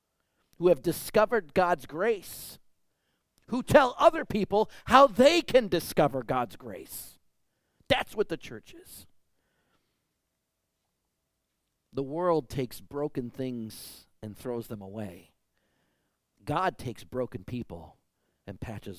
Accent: American